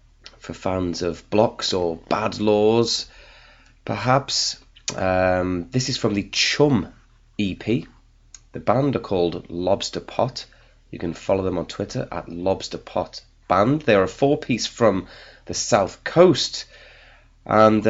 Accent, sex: British, male